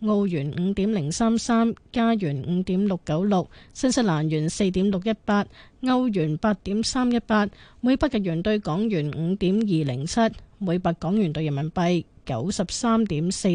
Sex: female